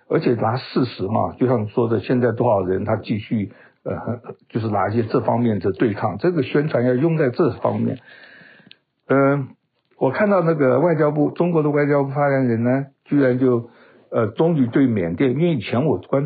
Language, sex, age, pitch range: Chinese, male, 60-79, 115-145 Hz